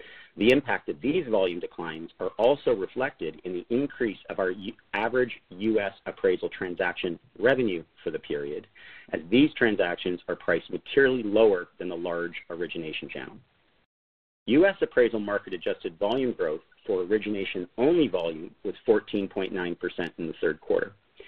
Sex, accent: male, American